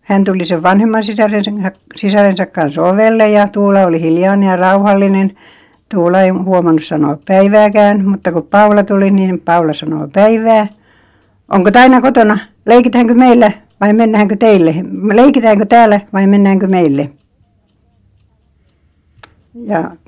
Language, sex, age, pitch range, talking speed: Finnish, female, 60-79, 160-205 Hz, 125 wpm